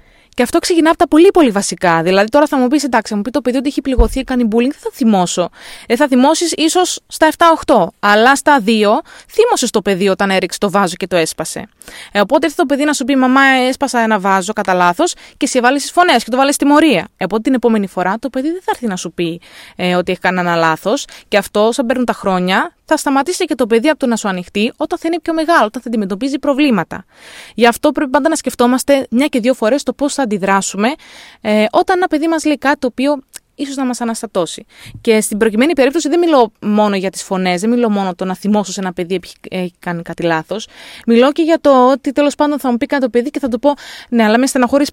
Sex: female